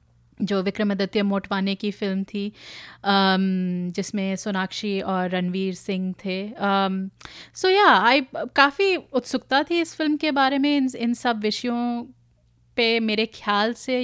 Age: 30-49